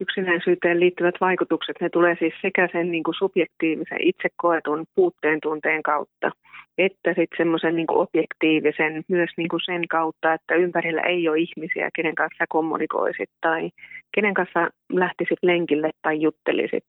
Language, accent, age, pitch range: Finnish, native, 30-49, 160-180 Hz